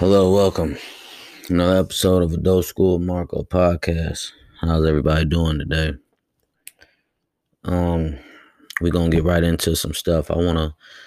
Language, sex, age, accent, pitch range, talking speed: English, male, 20-39, American, 80-90 Hz, 125 wpm